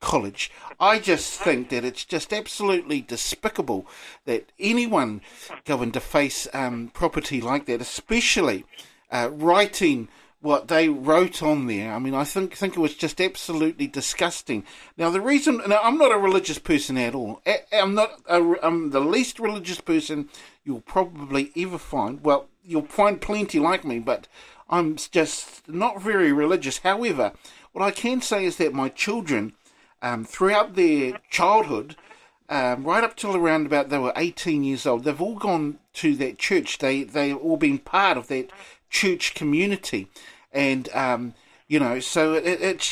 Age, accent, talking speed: 50-69, Australian, 165 wpm